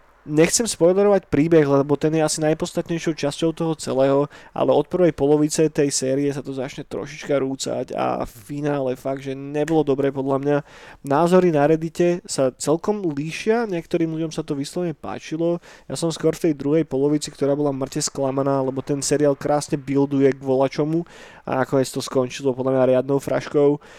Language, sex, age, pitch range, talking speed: Slovak, male, 20-39, 135-160 Hz, 175 wpm